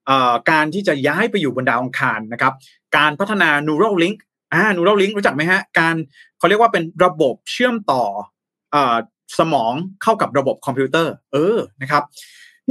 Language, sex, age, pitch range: Thai, male, 20-39, 145-205 Hz